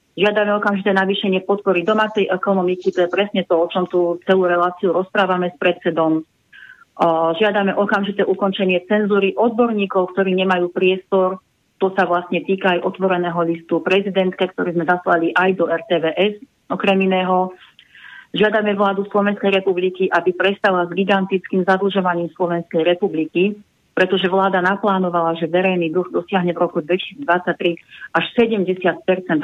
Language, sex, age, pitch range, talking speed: Slovak, female, 30-49, 175-200 Hz, 130 wpm